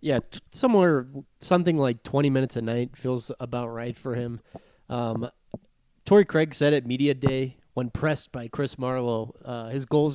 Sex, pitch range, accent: male, 115-140 Hz, American